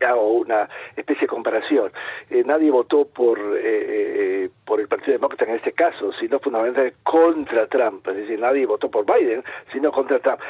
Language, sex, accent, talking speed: Spanish, male, Argentinian, 175 wpm